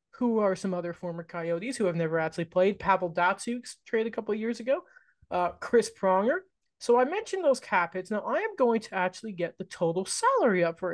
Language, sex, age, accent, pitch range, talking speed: English, male, 20-39, American, 190-275 Hz, 220 wpm